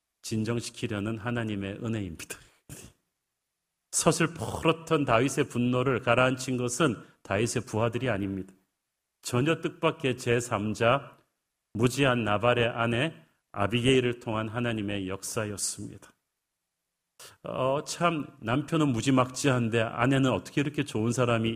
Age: 40-59